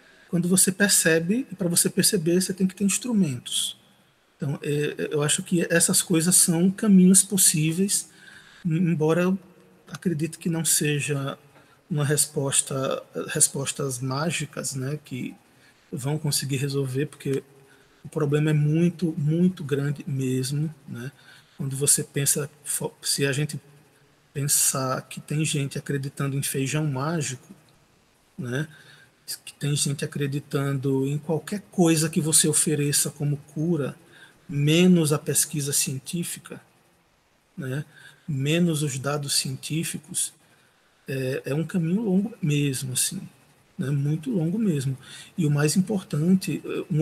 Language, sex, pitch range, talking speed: Portuguese, male, 145-175 Hz, 120 wpm